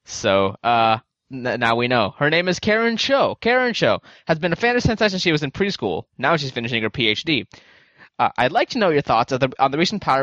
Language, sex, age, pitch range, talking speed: English, male, 20-39, 130-185 Hz, 245 wpm